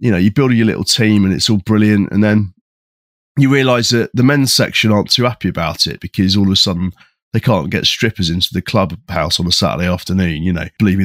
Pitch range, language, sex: 95-120 Hz, English, male